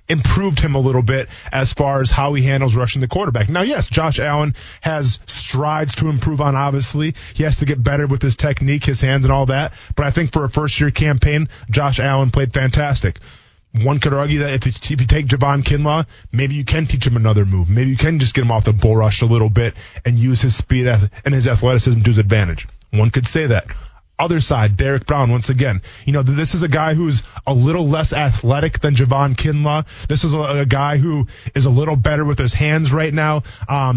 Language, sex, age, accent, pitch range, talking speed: English, male, 20-39, American, 120-150 Hz, 225 wpm